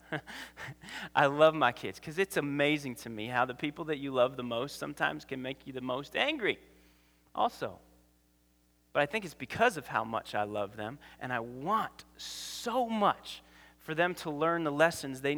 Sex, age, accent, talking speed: male, 30-49, American, 185 wpm